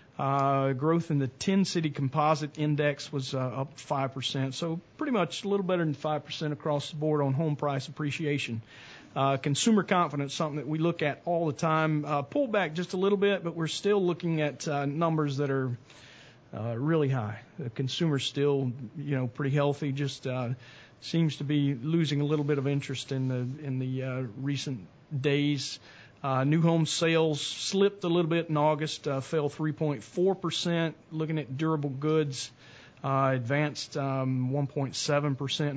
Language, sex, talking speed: English, male, 170 wpm